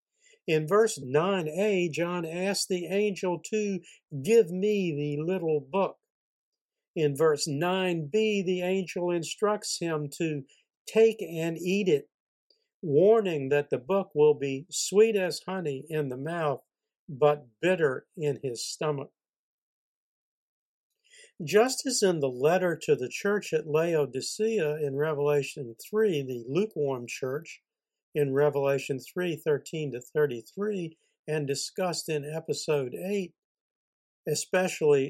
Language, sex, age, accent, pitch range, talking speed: English, male, 50-69, American, 145-200 Hz, 120 wpm